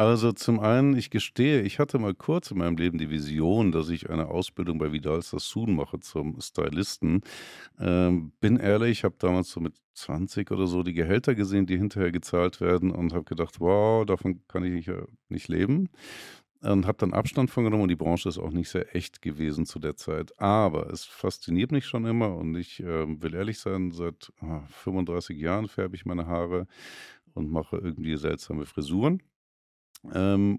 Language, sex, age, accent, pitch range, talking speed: German, male, 50-69, German, 80-100 Hz, 185 wpm